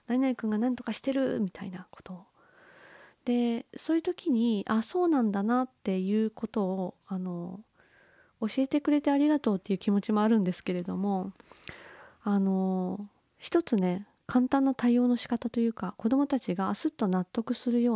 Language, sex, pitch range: Japanese, female, 195-270 Hz